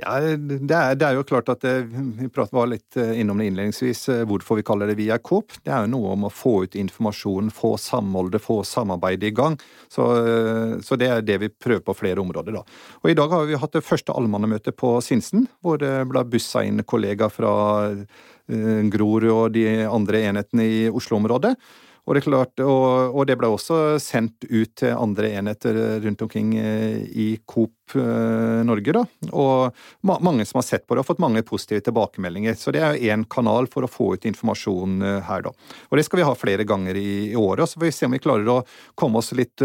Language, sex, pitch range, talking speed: English, male, 110-135 Hz, 205 wpm